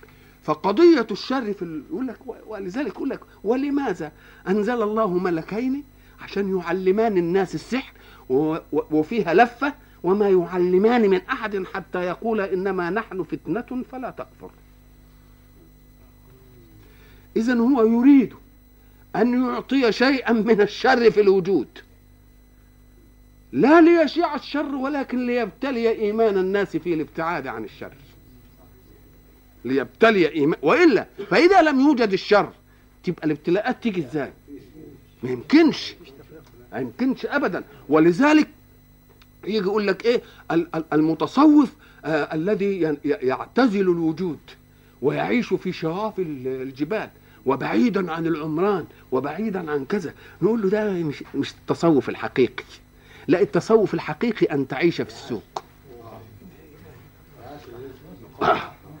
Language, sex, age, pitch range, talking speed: Arabic, male, 50-69, 155-235 Hz, 105 wpm